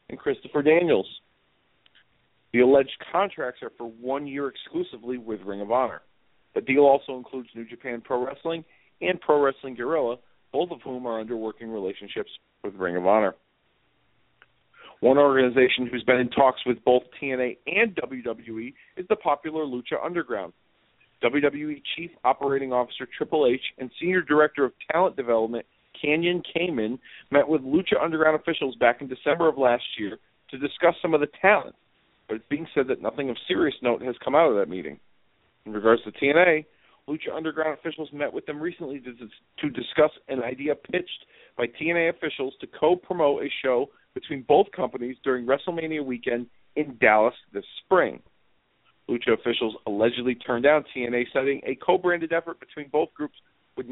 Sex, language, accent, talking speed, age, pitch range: male, English, American, 165 wpm, 40-59, 125-155 Hz